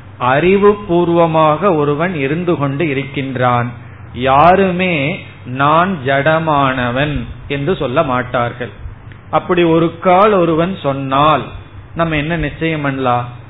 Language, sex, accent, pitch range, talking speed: Tamil, male, native, 120-160 Hz, 95 wpm